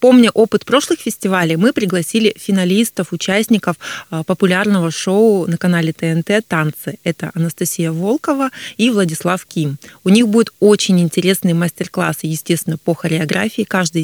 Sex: female